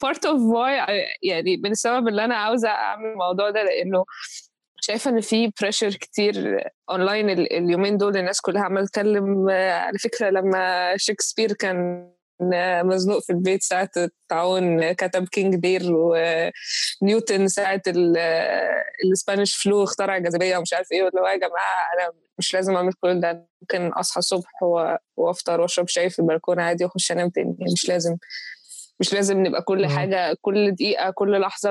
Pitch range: 175-195 Hz